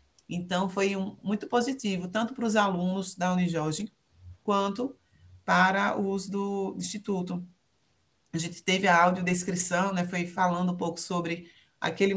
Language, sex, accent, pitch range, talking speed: Portuguese, female, Brazilian, 165-195 Hz, 135 wpm